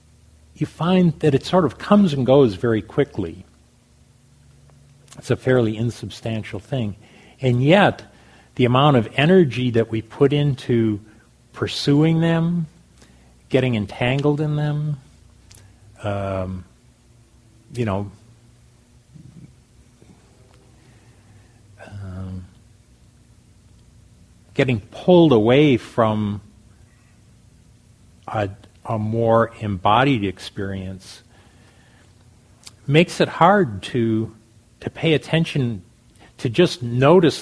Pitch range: 100-125 Hz